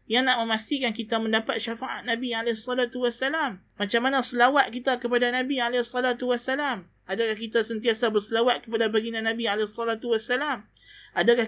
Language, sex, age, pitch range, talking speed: Malay, male, 20-39, 195-245 Hz, 125 wpm